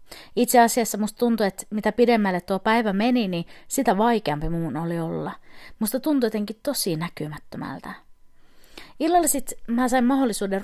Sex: female